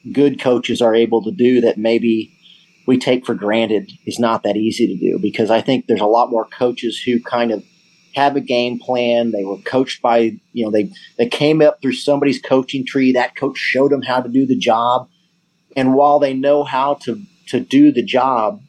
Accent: American